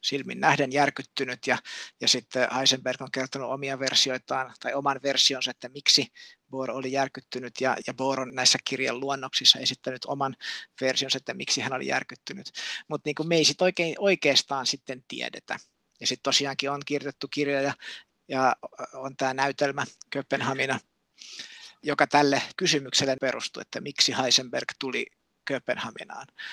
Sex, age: male, 50-69